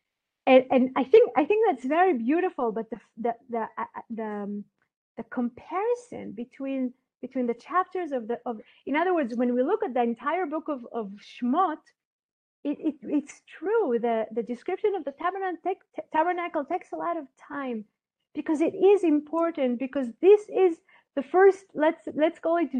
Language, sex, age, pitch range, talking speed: English, female, 40-59, 250-340 Hz, 180 wpm